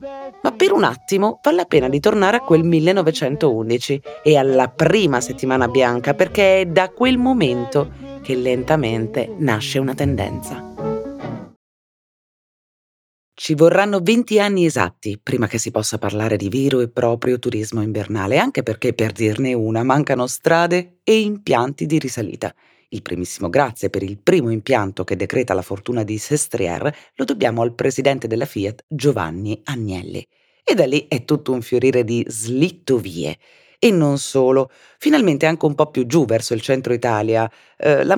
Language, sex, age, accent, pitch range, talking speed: Italian, female, 30-49, native, 115-160 Hz, 155 wpm